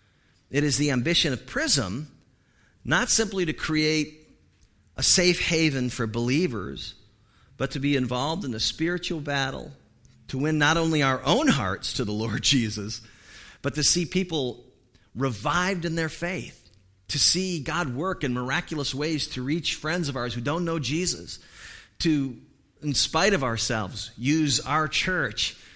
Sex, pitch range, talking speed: male, 115-155 Hz, 155 wpm